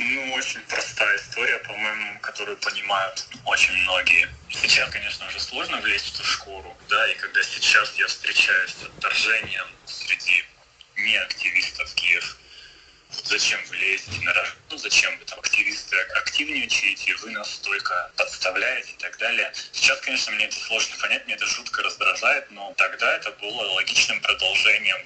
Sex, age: male, 20-39